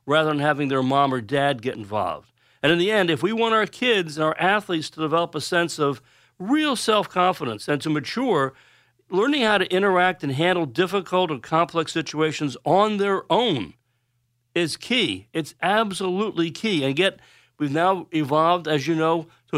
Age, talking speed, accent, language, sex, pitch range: 50-69, 180 wpm, American, English, male, 135-180 Hz